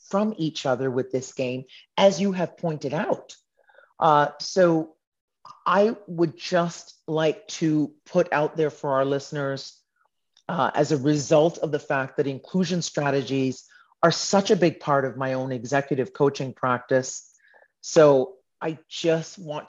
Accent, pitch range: American, 140-170 Hz